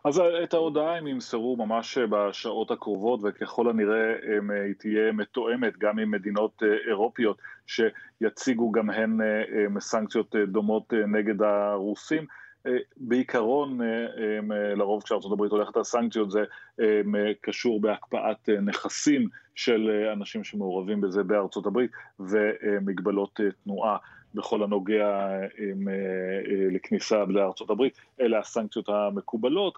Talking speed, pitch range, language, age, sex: 95 wpm, 105-120 Hz, Hebrew, 30-49, male